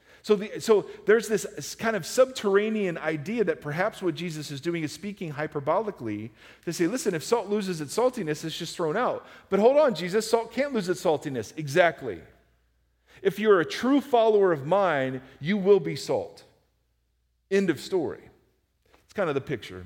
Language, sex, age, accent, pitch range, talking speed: English, male, 40-59, American, 145-215 Hz, 180 wpm